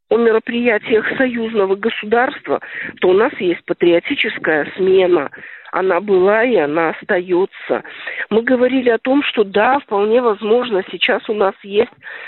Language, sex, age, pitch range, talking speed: Russian, female, 50-69, 195-240 Hz, 130 wpm